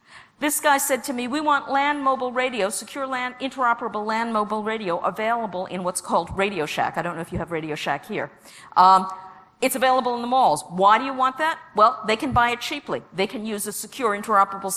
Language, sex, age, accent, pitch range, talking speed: English, female, 50-69, American, 200-275 Hz, 220 wpm